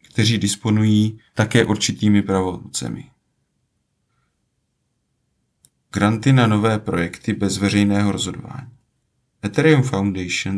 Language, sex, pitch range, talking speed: Czech, male, 105-130 Hz, 80 wpm